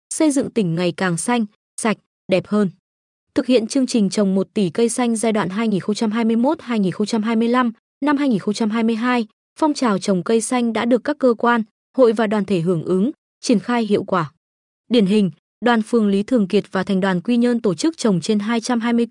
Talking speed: 190 wpm